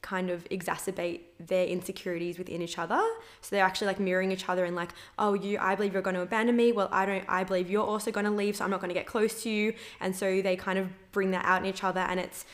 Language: English